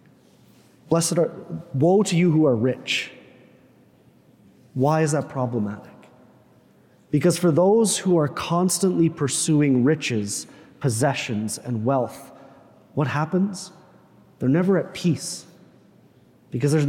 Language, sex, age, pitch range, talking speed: English, male, 30-49, 130-165 Hz, 110 wpm